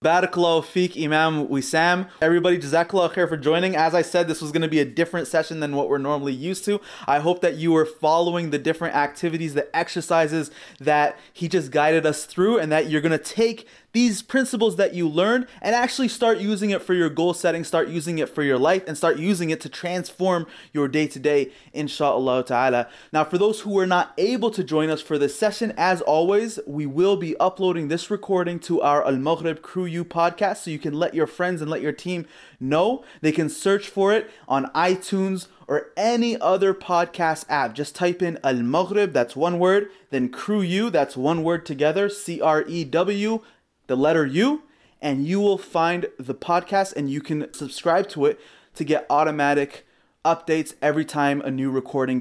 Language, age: English, 20-39